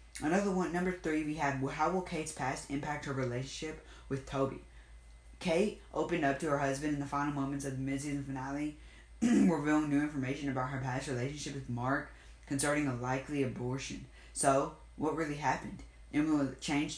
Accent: American